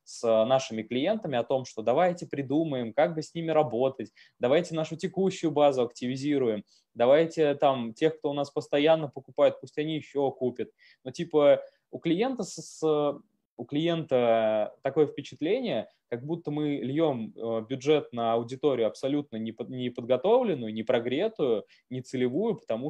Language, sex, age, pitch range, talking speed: Russian, male, 20-39, 120-150 Hz, 145 wpm